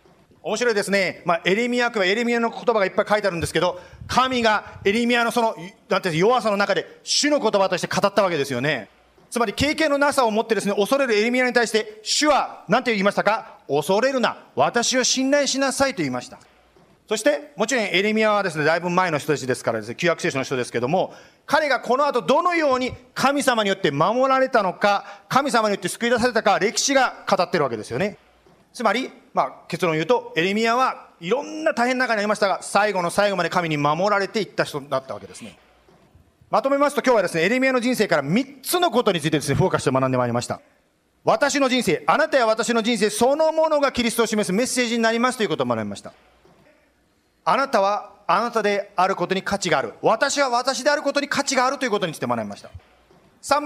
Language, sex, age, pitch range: Japanese, male, 40-59, 185-255 Hz